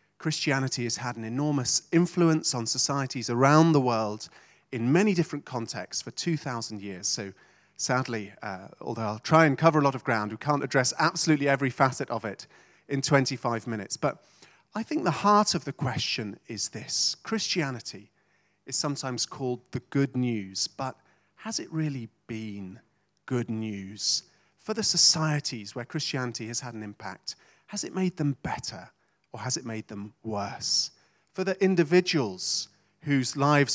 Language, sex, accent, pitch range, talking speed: English, male, British, 115-155 Hz, 160 wpm